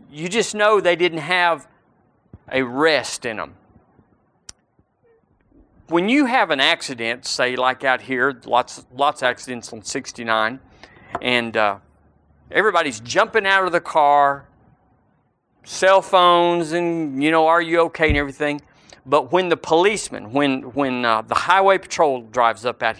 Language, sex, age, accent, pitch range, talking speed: English, male, 50-69, American, 125-175 Hz, 145 wpm